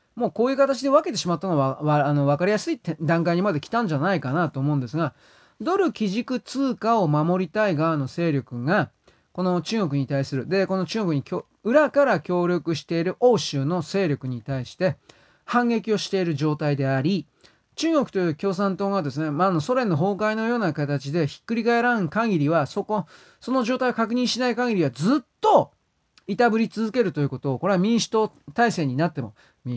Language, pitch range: Japanese, 150-225 Hz